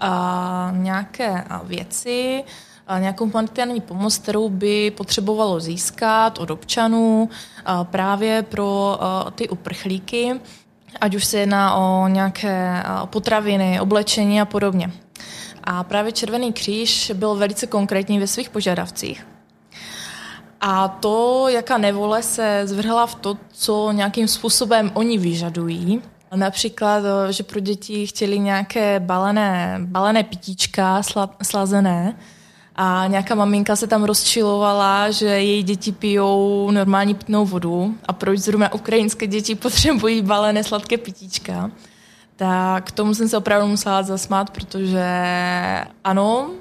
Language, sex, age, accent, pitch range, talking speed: Czech, female, 20-39, native, 190-220 Hz, 120 wpm